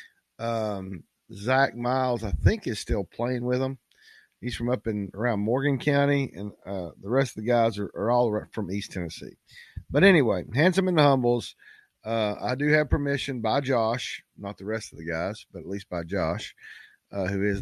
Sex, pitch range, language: male, 100-135 Hz, English